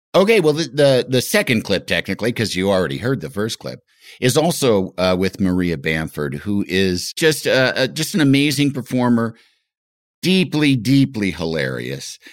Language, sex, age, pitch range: English, male, 50-69, 95-145 Hz